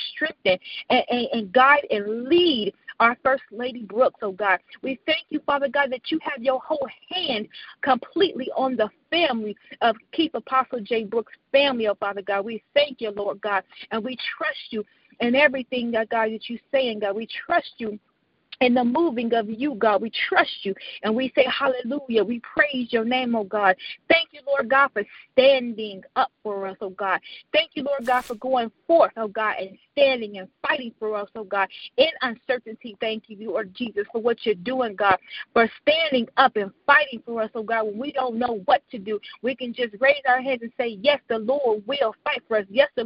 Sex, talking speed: female, 210 wpm